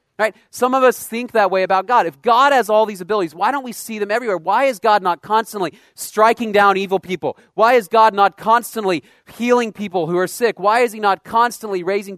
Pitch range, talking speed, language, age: 155-210 Hz, 225 wpm, English, 30-49